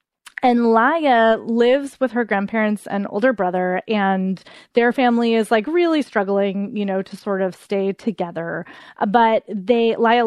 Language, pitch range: English, 195-235 Hz